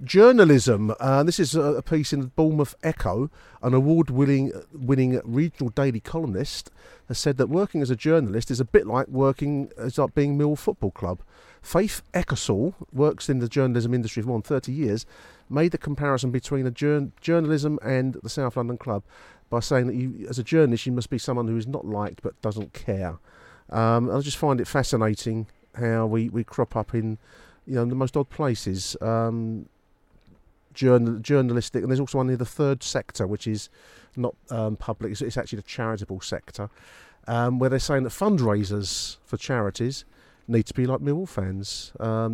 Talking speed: 175 wpm